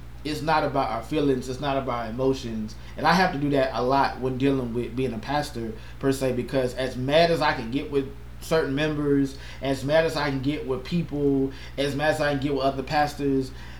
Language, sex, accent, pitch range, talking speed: English, male, American, 130-150 Hz, 230 wpm